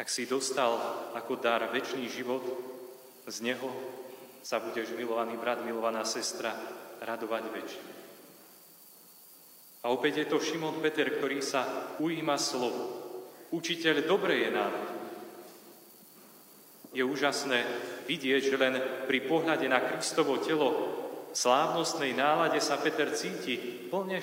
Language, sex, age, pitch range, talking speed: Slovak, male, 40-59, 125-165 Hz, 120 wpm